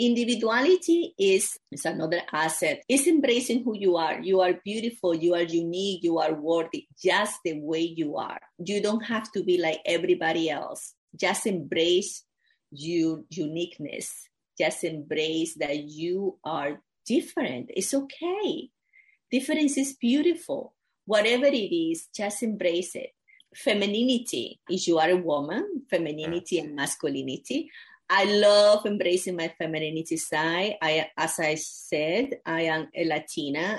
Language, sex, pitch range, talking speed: English, female, 165-260 Hz, 135 wpm